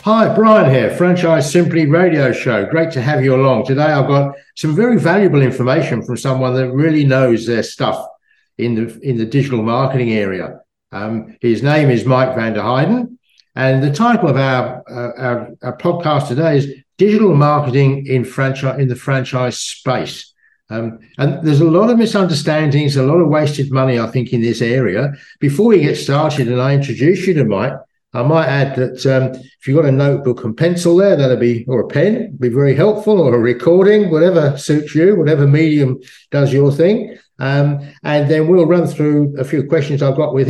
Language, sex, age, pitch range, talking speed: English, male, 60-79, 125-160 Hz, 195 wpm